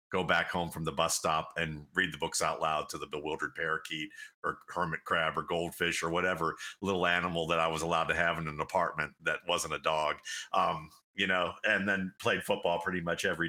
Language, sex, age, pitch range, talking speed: English, male, 50-69, 85-100 Hz, 220 wpm